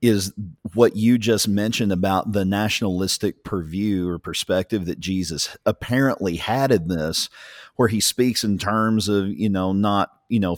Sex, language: male, English